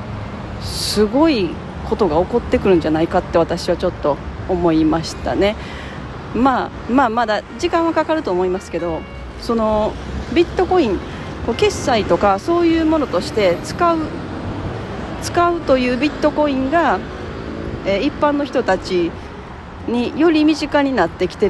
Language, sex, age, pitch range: Japanese, female, 40-59, 165-245 Hz